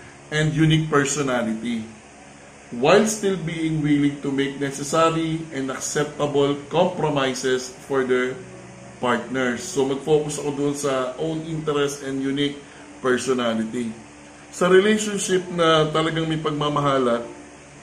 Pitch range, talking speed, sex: 125-155 Hz, 110 wpm, male